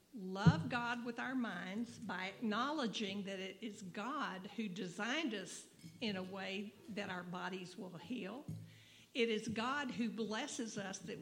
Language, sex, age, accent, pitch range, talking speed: English, female, 50-69, American, 195-240 Hz, 155 wpm